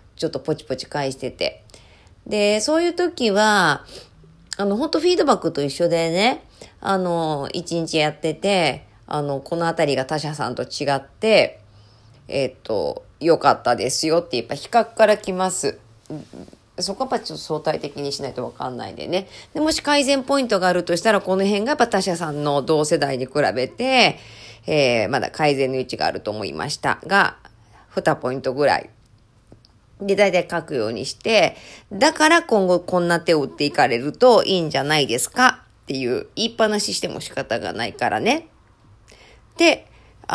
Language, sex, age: Japanese, female, 40-59